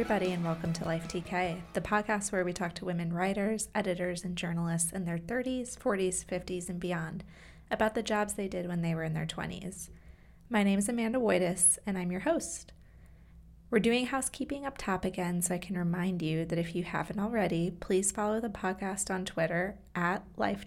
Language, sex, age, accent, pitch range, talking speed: English, female, 20-39, American, 170-205 Hz, 195 wpm